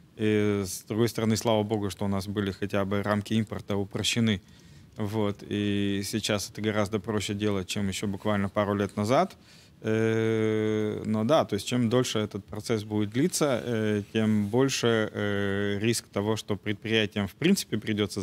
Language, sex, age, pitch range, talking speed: Russian, male, 20-39, 100-110 Hz, 155 wpm